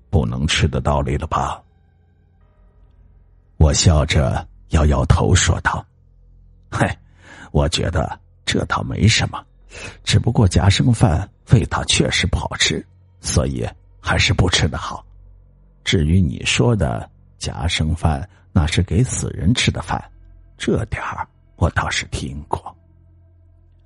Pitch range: 85-100 Hz